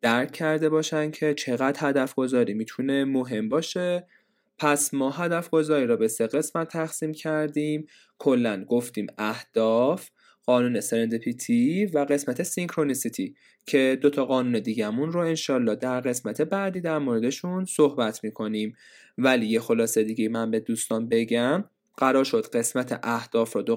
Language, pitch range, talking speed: Persian, 120-165 Hz, 140 wpm